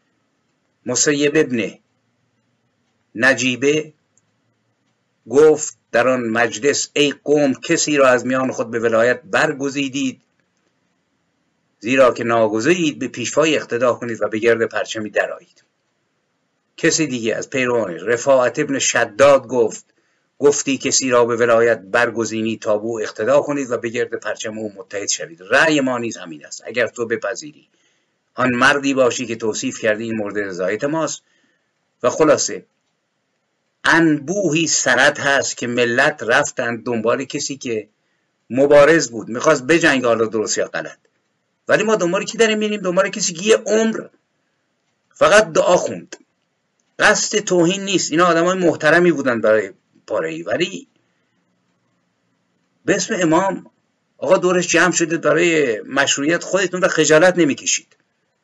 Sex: male